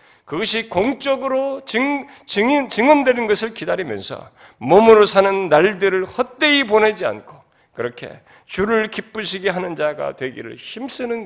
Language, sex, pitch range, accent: Korean, male, 190-245 Hz, native